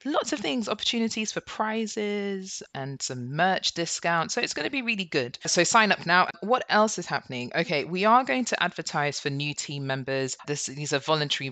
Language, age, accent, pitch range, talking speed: English, 20-39, British, 135-200 Hz, 205 wpm